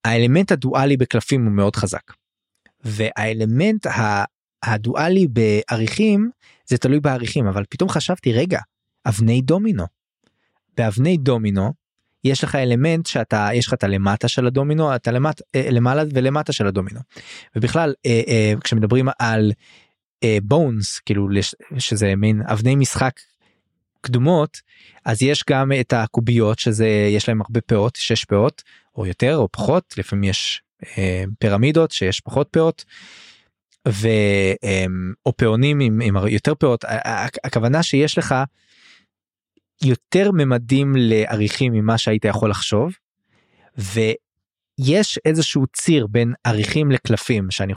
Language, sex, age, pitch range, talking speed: Hebrew, male, 20-39, 105-135 Hz, 120 wpm